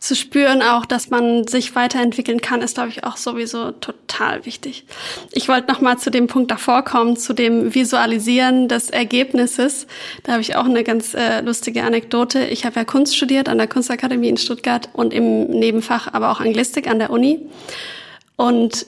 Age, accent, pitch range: 20-39, German, 235-265 Hz